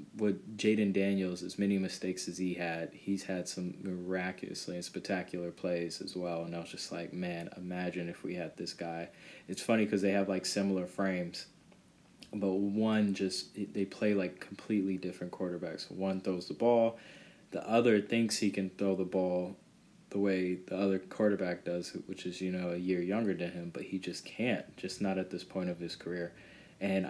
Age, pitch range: 20-39, 90-100 Hz